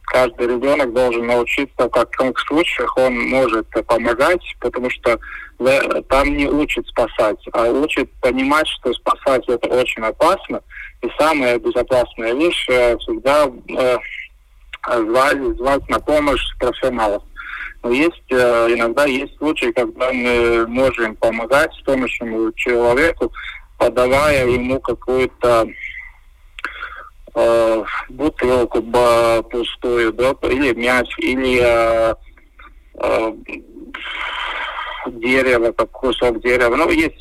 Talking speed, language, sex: 100 wpm, Russian, male